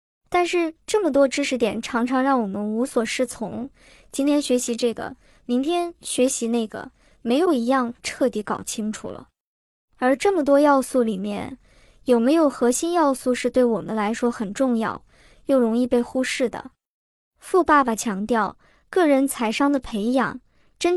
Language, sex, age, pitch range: Chinese, male, 20-39, 230-285 Hz